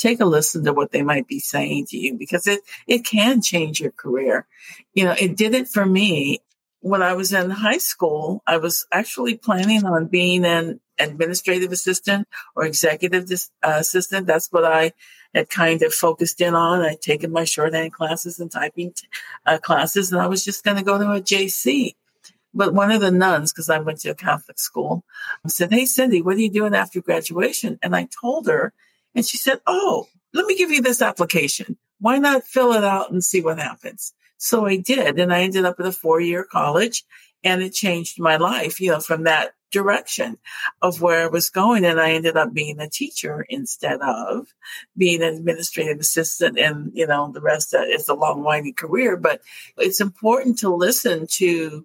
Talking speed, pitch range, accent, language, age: 200 wpm, 165-210 Hz, American, English, 50-69